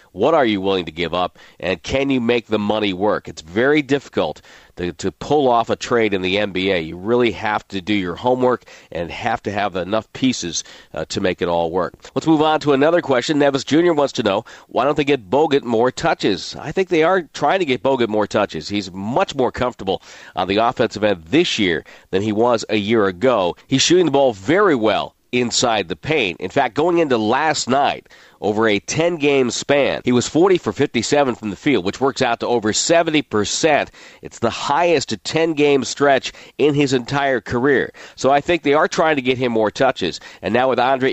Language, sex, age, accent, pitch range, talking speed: English, male, 40-59, American, 105-145 Hz, 215 wpm